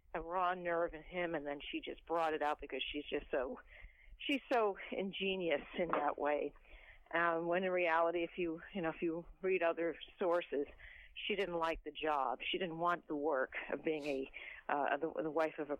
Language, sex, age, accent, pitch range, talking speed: English, female, 50-69, American, 160-215 Hz, 205 wpm